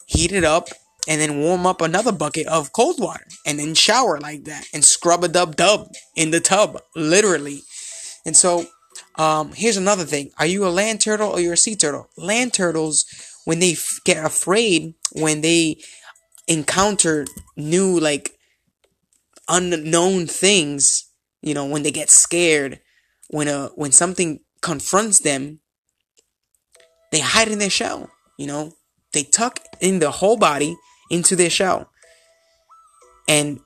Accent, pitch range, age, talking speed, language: American, 150-195 Hz, 20-39, 150 wpm, English